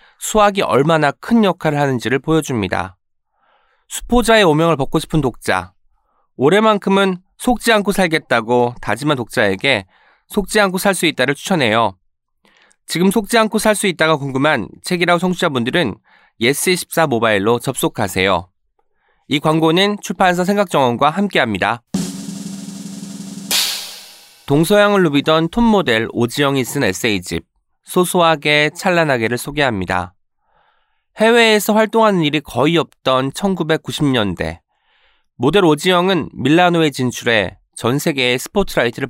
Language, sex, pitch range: Korean, male, 120-195 Hz